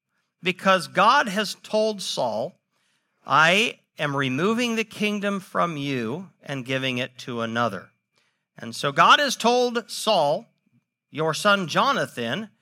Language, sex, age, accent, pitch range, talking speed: English, male, 50-69, American, 140-210 Hz, 125 wpm